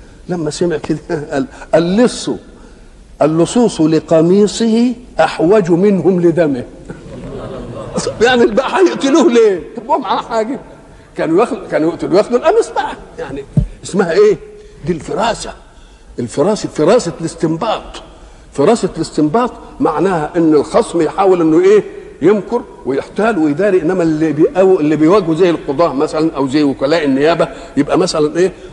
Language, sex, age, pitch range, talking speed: Arabic, male, 60-79, 155-210 Hz, 120 wpm